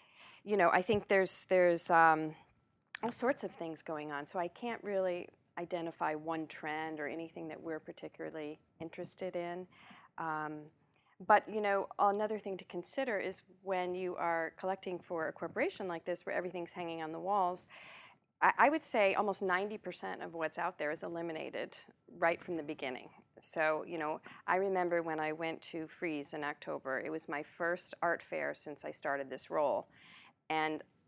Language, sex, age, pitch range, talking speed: English, female, 40-59, 160-190 Hz, 175 wpm